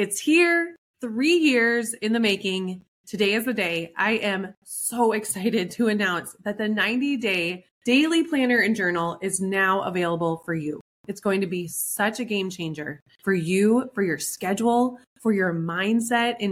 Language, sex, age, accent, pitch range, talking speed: English, female, 20-39, American, 190-235 Hz, 165 wpm